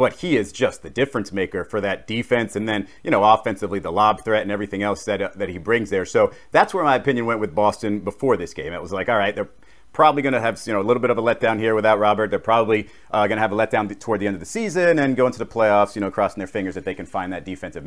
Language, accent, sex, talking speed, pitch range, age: English, American, male, 295 wpm, 105-145 Hz, 40-59